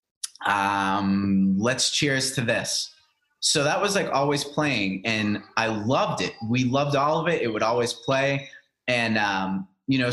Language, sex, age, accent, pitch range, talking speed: English, male, 30-49, American, 105-130 Hz, 165 wpm